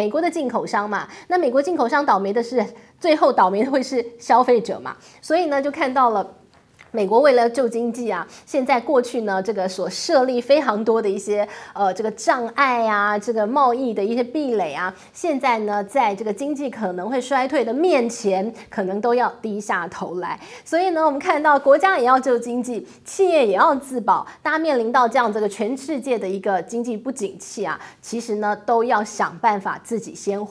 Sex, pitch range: female, 210-270 Hz